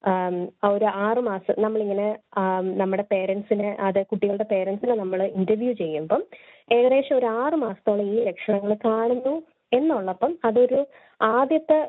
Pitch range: 190-240 Hz